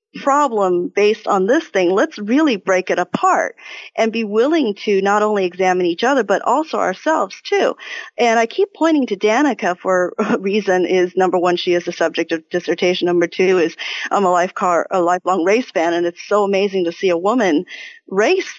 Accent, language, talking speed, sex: American, English, 195 wpm, female